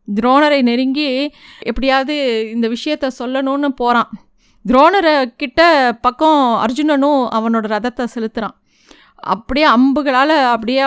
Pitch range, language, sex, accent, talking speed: 220-270 Hz, Tamil, female, native, 90 wpm